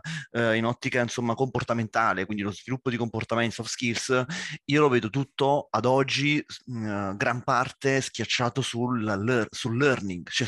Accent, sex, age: native, male, 30-49